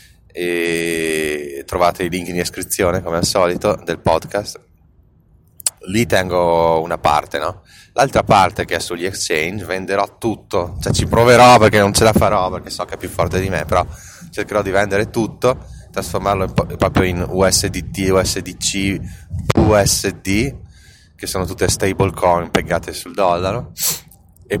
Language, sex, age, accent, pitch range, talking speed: Italian, male, 20-39, native, 85-100 Hz, 155 wpm